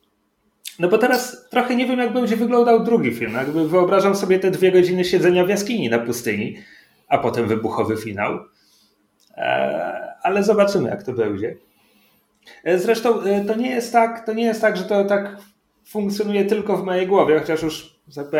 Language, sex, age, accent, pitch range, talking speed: Polish, male, 30-49, native, 125-185 Hz, 165 wpm